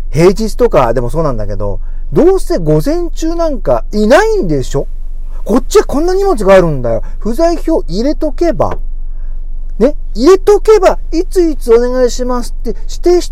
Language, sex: Japanese, male